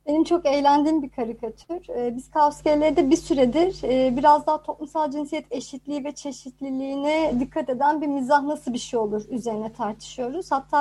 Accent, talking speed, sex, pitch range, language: native, 155 wpm, male, 265-340 Hz, Turkish